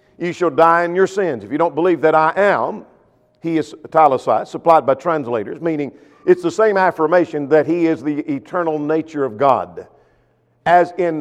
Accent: American